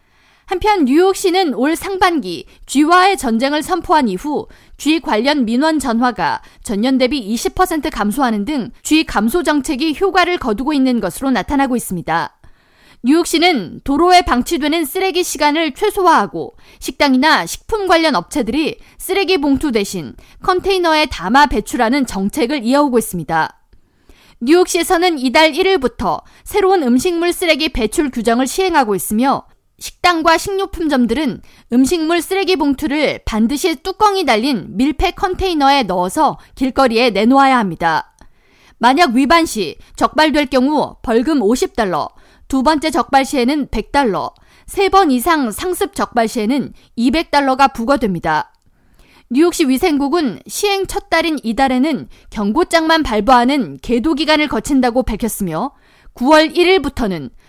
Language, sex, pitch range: Korean, female, 240-335 Hz